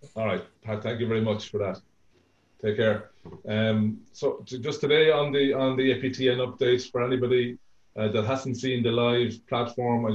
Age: 30-49